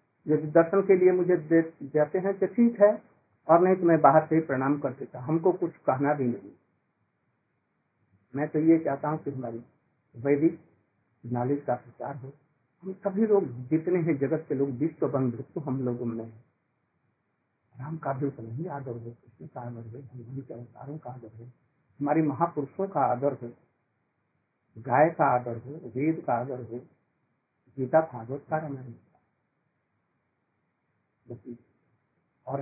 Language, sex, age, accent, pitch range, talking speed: Hindi, male, 60-79, native, 125-165 Hz, 160 wpm